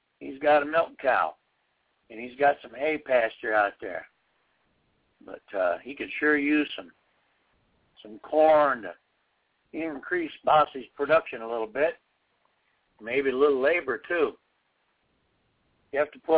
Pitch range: 130-155 Hz